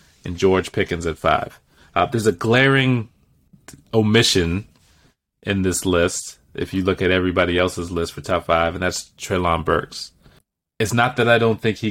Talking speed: 170 wpm